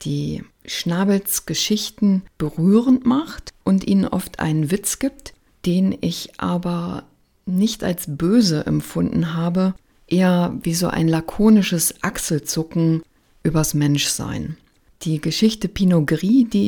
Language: German